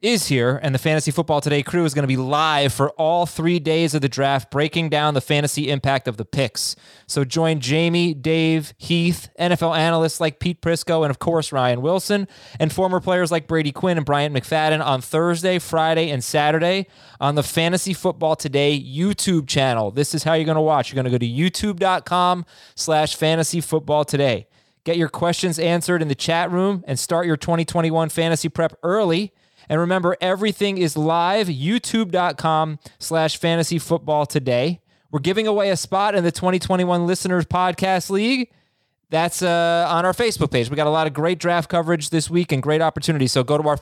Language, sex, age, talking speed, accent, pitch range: English, male, 20-39, 185 wpm, American, 140-170 Hz